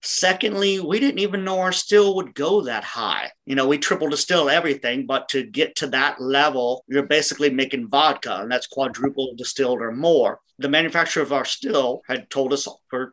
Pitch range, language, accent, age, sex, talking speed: 135-160 Hz, English, American, 50-69, male, 190 wpm